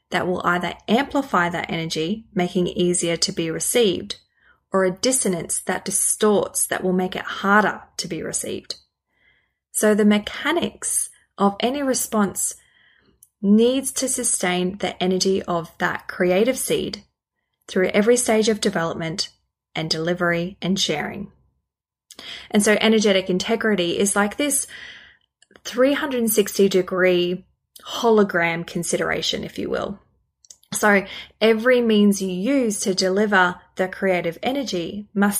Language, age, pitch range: English, 20-39, 180-220 Hz